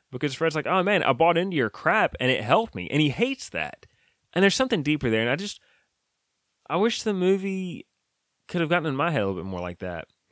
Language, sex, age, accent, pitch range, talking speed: English, male, 20-39, American, 100-165 Hz, 245 wpm